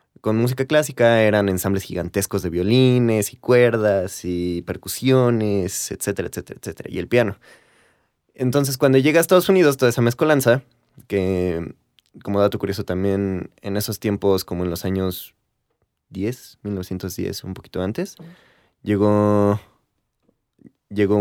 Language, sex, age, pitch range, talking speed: Spanish, male, 20-39, 95-130 Hz, 130 wpm